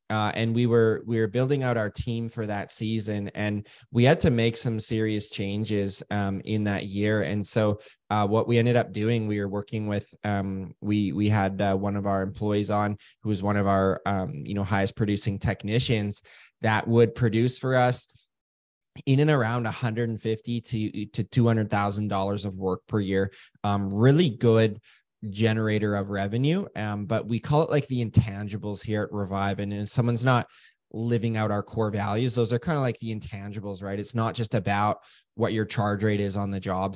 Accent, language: American, English